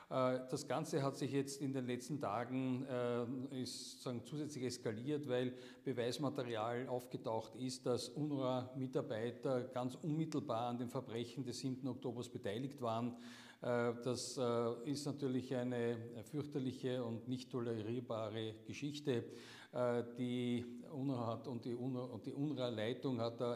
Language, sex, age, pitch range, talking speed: German, male, 50-69, 115-130 Hz, 105 wpm